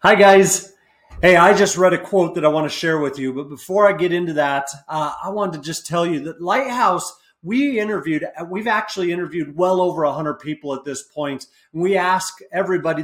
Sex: male